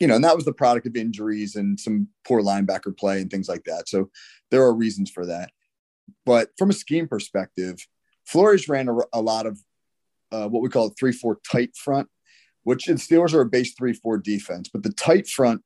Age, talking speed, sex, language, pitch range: 30-49, 210 wpm, male, English, 100-130 Hz